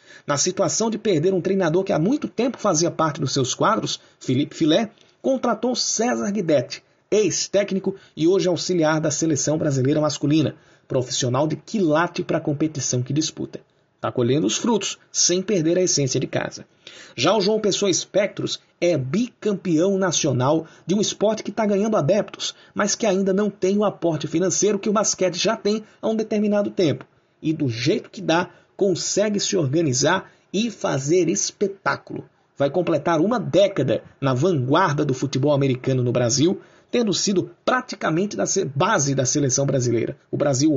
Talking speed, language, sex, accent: 160 wpm, Portuguese, male, Brazilian